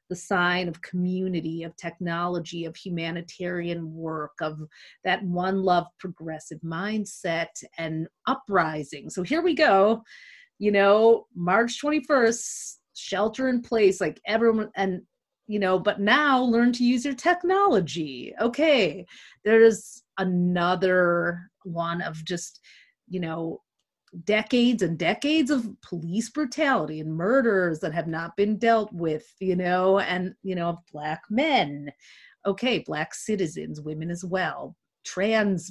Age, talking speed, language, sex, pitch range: 30-49, 130 wpm, English, female, 170-230 Hz